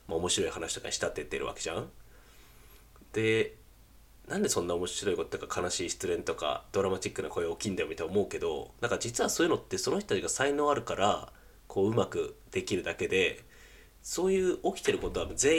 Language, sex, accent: Japanese, male, native